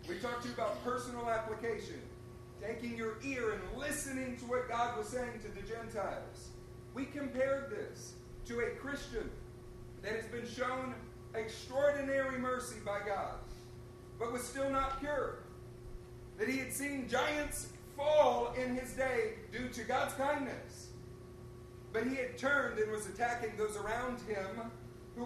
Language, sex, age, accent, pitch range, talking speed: English, male, 40-59, American, 225-270 Hz, 150 wpm